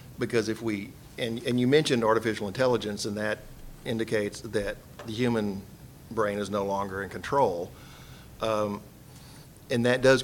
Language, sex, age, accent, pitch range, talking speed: English, male, 50-69, American, 105-125 Hz, 145 wpm